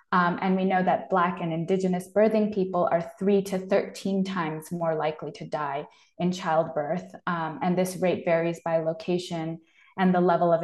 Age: 20-39